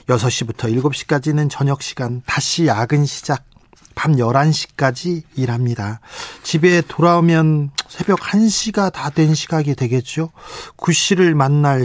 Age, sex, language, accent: 40-59, male, Korean, native